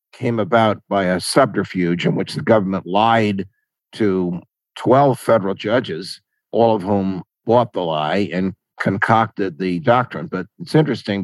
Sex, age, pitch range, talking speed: male, 60-79, 105-130 Hz, 145 wpm